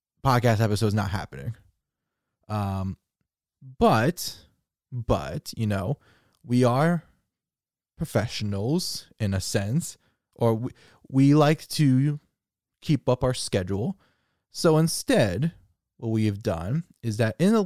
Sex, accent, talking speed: male, American, 120 wpm